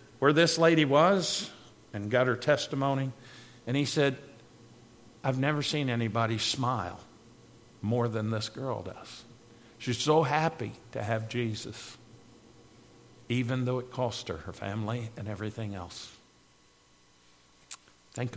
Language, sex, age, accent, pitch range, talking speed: English, male, 50-69, American, 115-160 Hz, 125 wpm